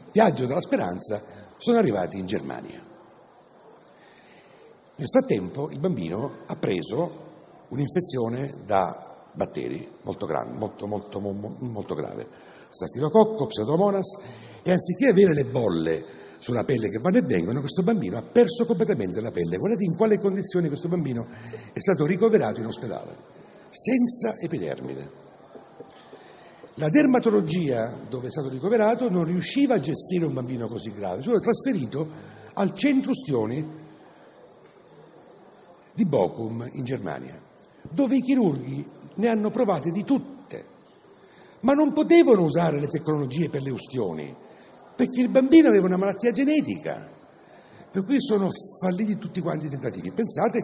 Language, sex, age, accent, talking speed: Italian, male, 60-79, native, 135 wpm